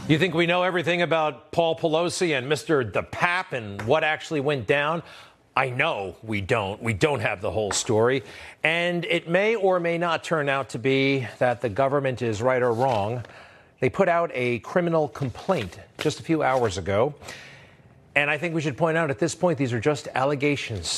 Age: 40-59